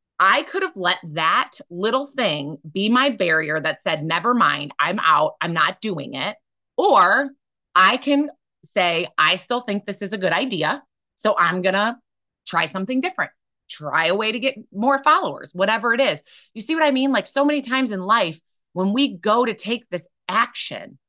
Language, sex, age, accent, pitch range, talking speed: English, female, 30-49, American, 180-255 Hz, 190 wpm